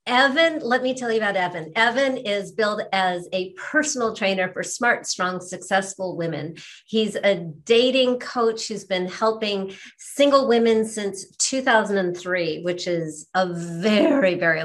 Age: 50-69